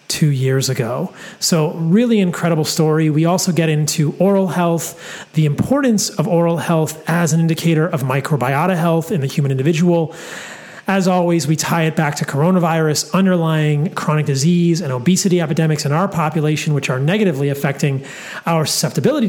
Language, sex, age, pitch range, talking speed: English, male, 30-49, 155-185 Hz, 160 wpm